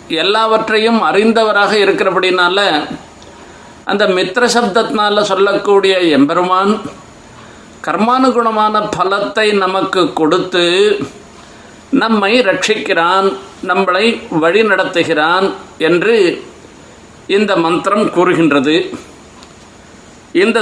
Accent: native